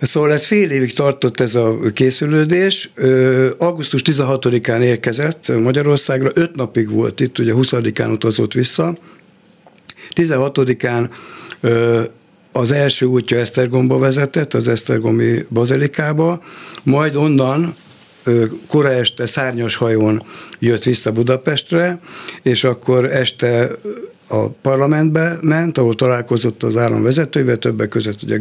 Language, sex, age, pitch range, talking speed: Hungarian, male, 60-79, 120-150 Hz, 110 wpm